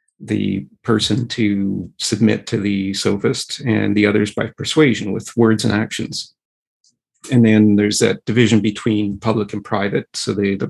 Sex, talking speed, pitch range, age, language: male, 155 wpm, 105-115 Hz, 40-59, English